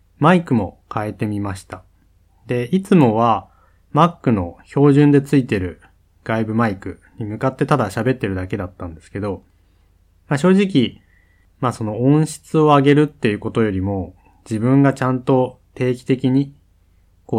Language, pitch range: Japanese, 90-130 Hz